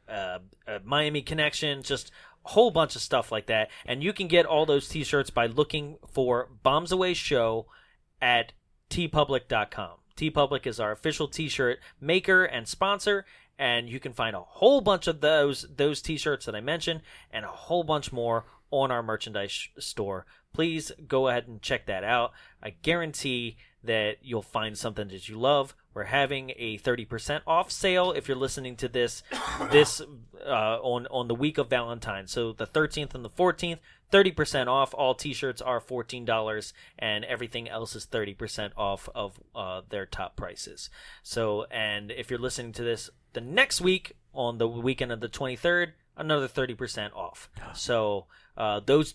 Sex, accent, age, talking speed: male, American, 30-49, 170 wpm